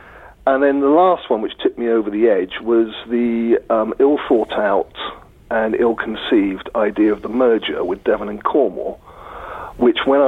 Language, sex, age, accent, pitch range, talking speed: English, male, 40-59, British, 110-170 Hz, 160 wpm